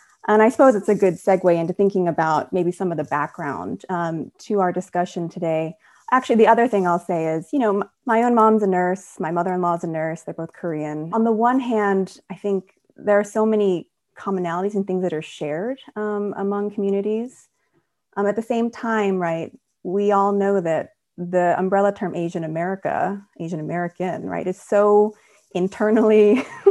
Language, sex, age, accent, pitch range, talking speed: English, female, 30-49, American, 175-225 Hz, 180 wpm